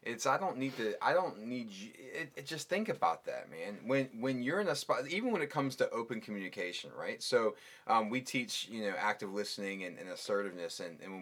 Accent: American